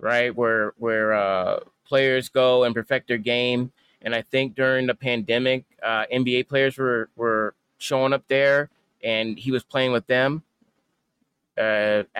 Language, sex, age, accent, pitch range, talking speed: English, male, 30-49, American, 115-135 Hz, 150 wpm